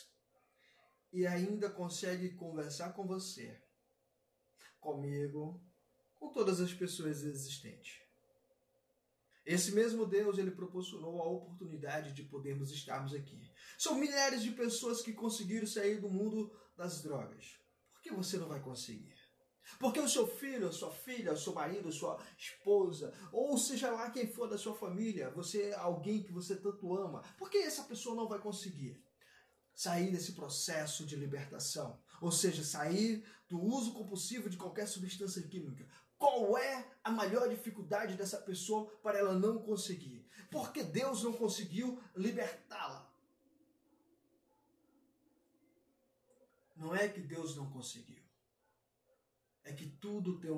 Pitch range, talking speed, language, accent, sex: 165-235 Hz, 140 wpm, Portuguese, Brazilian, male